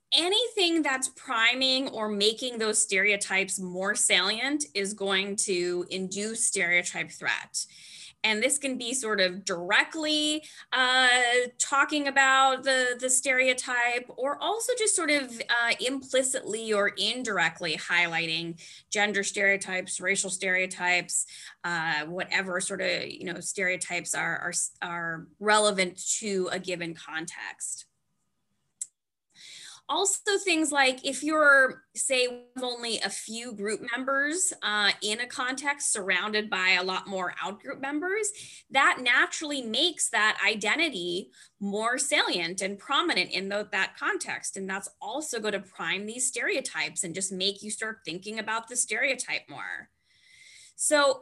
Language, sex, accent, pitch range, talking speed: English, female, American, 190-270 Hz, 130 wpm